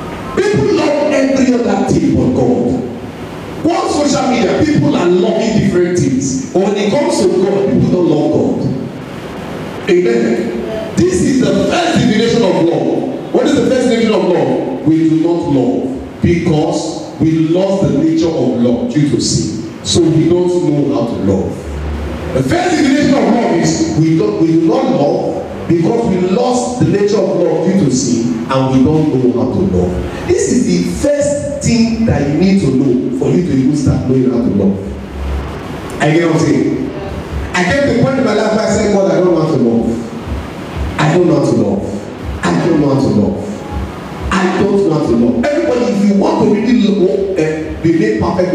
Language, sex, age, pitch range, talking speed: English, male, 40-59, 130-215 Hz, 190 wpm